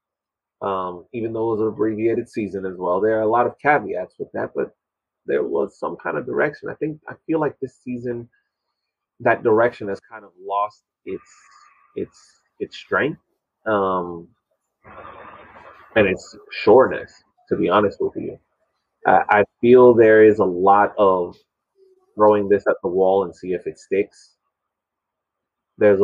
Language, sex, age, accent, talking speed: English, male, 30-49, American, 160 wpm